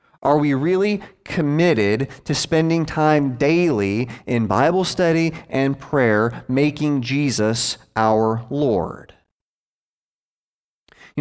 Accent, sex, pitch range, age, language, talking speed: American, male, 125-155 Hz, 30-49, English, 95 wpm